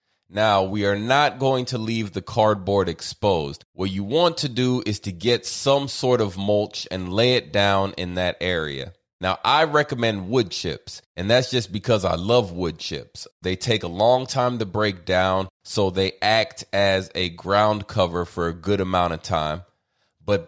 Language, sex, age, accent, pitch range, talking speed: English, male, 30-49, American, 95-120 Hz, 190 wpm